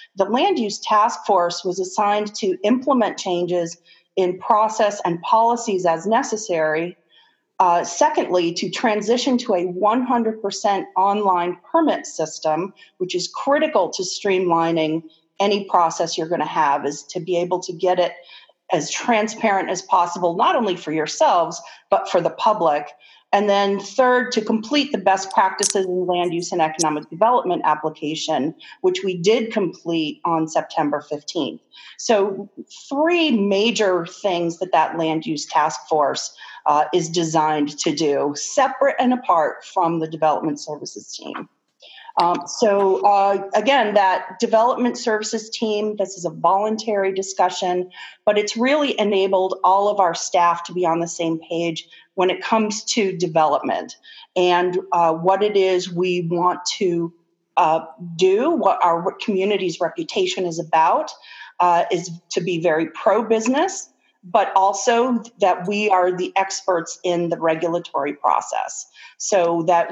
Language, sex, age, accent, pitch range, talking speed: English, female, 40-59, American, 170-215 Hz, 145 wpm